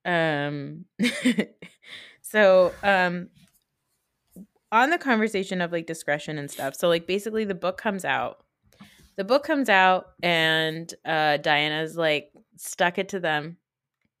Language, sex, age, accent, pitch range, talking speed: English, female, 20-39, American, 150-180 Hz, 125 wpm